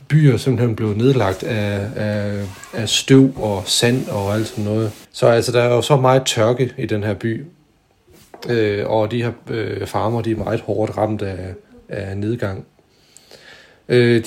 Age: 40-59